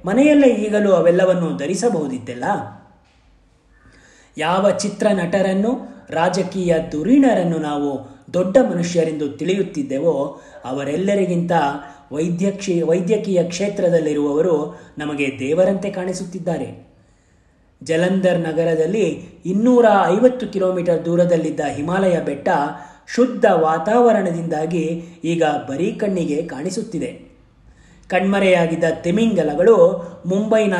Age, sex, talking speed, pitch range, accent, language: 30-49, male, 70 wpm, 145-190 Hz, native, Kannada